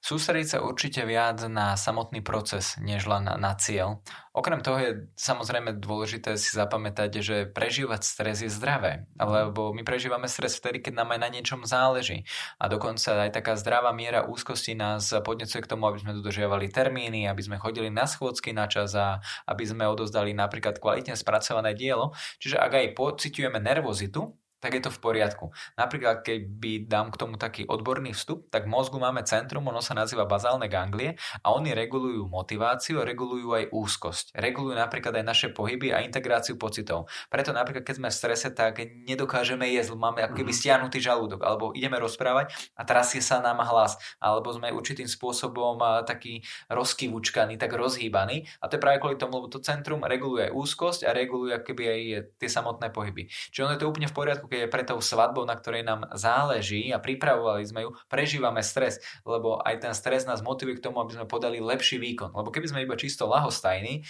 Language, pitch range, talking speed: Slovak, 110-130 Hz, 180 wpm